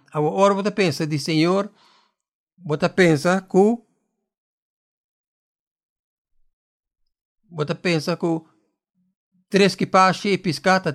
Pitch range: 155-190 Hz